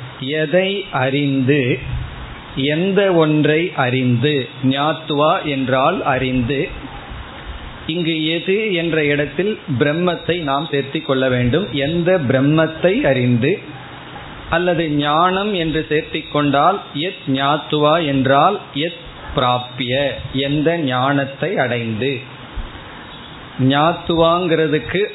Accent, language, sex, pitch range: native, Tamil, male, 135-165 Hz